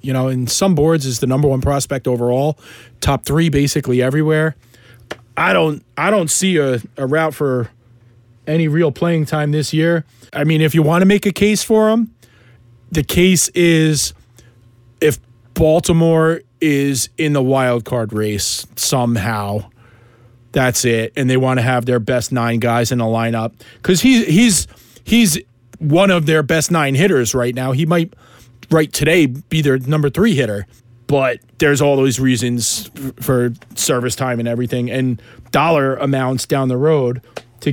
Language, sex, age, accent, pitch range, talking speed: English, male, 30-49, American, 120-160 Hz, 165 wpm